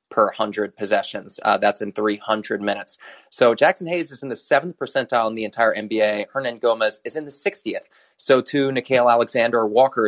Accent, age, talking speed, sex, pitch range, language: American, 30-49, 185 wpm, male, 120-170 Hz, English